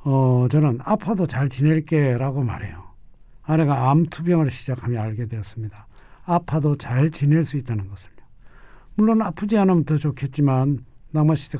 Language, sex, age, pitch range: Korean, male, 60-79, 120-165 Hz